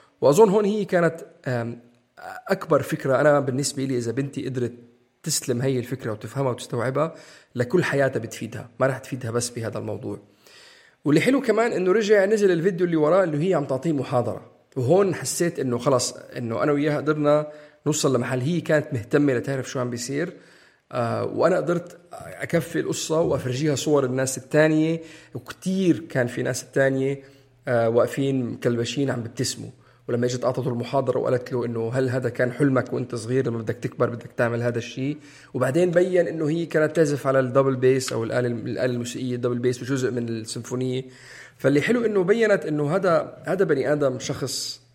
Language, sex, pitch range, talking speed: Arabic, male, 120-150 Hz, 165 wpm